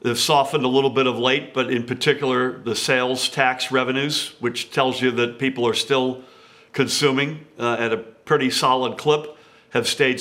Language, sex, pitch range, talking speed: English, male, 130-145 Hz, 175 wpm